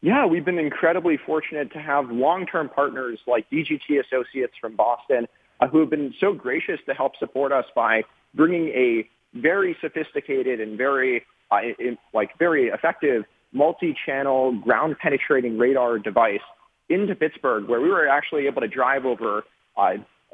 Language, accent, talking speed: English, American, 150 wpm